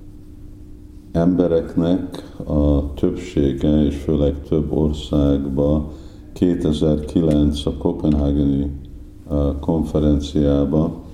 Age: 50-69